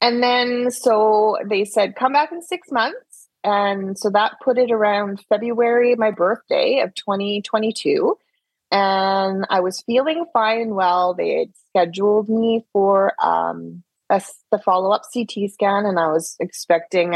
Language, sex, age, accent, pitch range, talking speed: English, female, 30-49, American, 175-220 Hz, 145 wpm